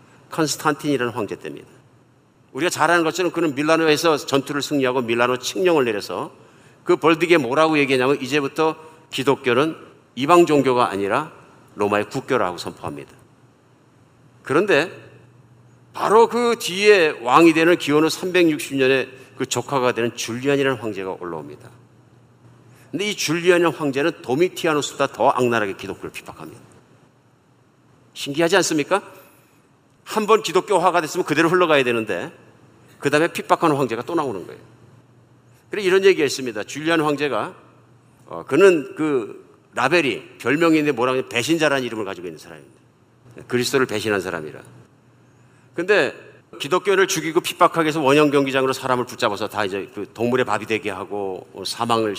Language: Korean